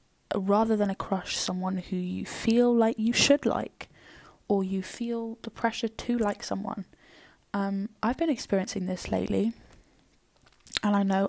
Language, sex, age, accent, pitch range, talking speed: English, female, 10-29, British, 190-225 Hz, 155 wpm